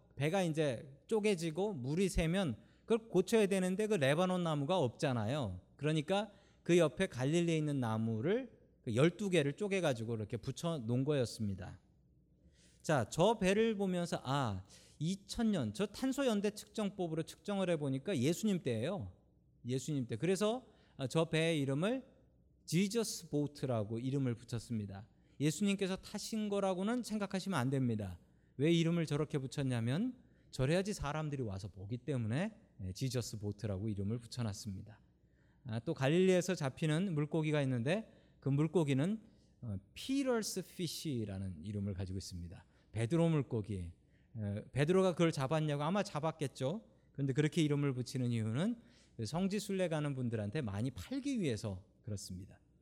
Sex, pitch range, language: male, 115-190 Hz, Korean